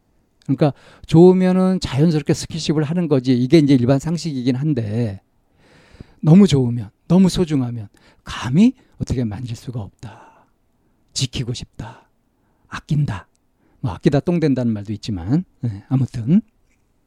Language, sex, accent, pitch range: Korean, male, native, 120-165 Hz